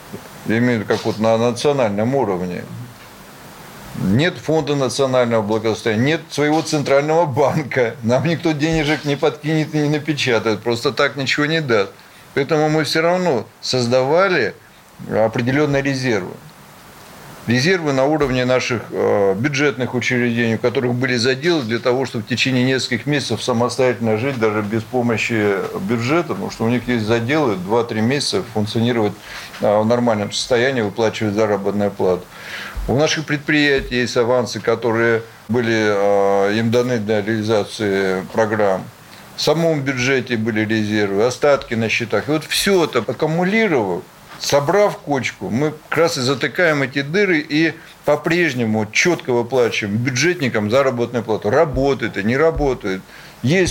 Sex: male